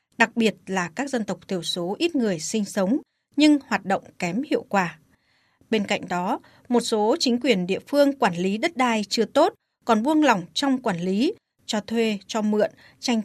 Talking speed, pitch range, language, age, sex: 200 wpm, 195-260 Hz, Vietnamese, 20-39, female